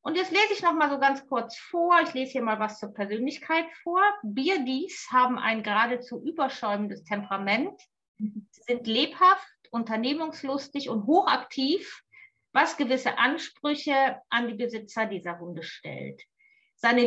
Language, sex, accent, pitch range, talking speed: German, female, German, 215-290 Hz, 140 wpm